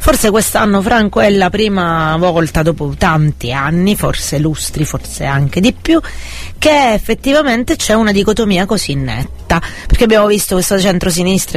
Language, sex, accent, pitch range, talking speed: Italian, female, native, 150-195 Hz, 145 wpm